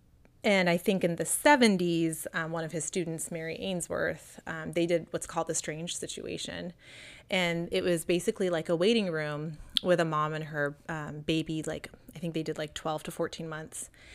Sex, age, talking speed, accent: female, 30-49, 195 wpm, American